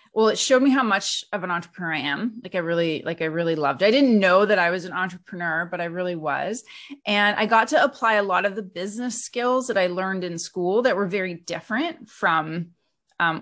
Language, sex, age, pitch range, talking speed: English, female, 30-49, 170-205 Hz, 235 wpm